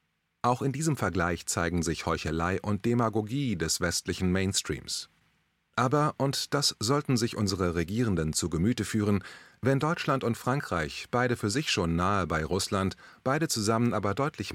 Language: German